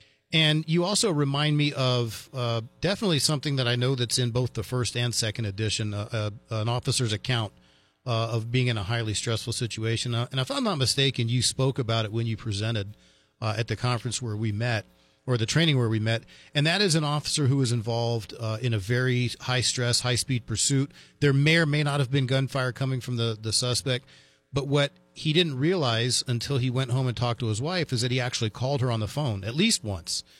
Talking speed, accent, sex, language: 225 wpm, American, male, English